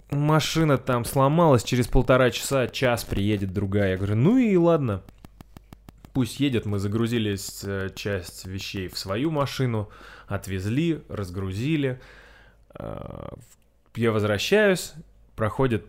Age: 20-39